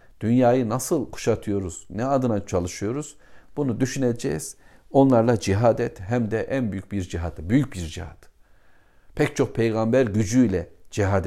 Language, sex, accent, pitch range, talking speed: Turkish, male, native, 90-120 Hz, 135 wpm